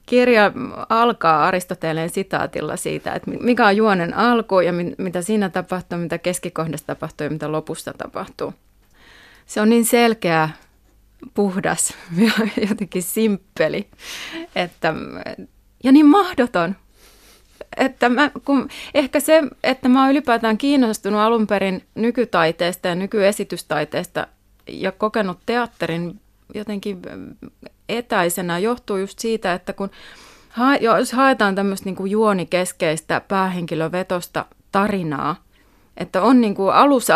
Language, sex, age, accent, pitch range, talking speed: Finnish, female, 30-49, native, 175-235 Hz, 110 wpm